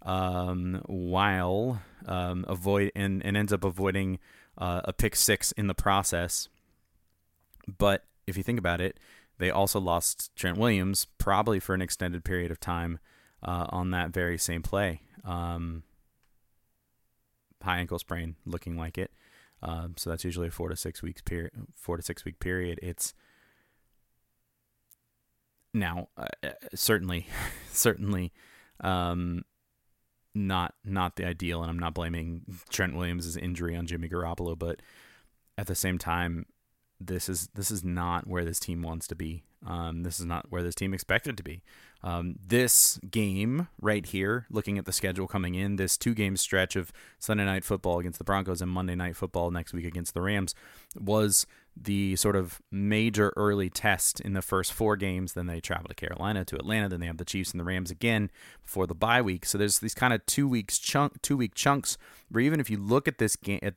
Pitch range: 85-100 Hz